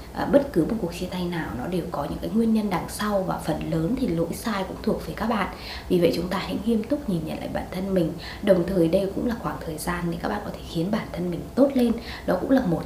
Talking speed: 295 wpm